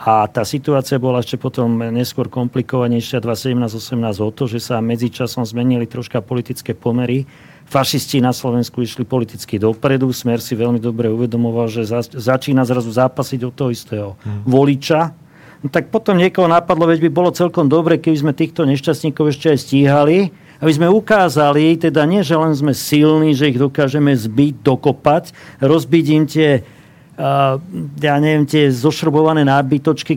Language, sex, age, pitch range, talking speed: Slovak, male, 40-59, 125-155 Hz, 155 wpm